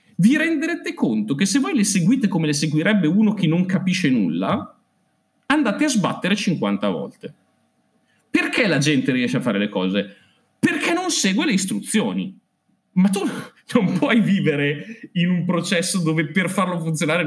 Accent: native